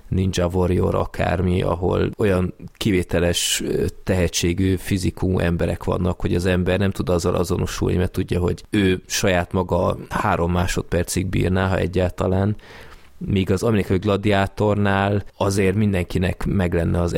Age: 20-39